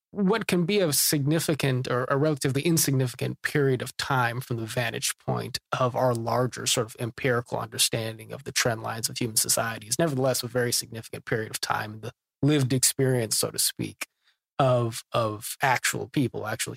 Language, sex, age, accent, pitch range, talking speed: English, male, 30-49, American, 115-140 Hz, 175 wpm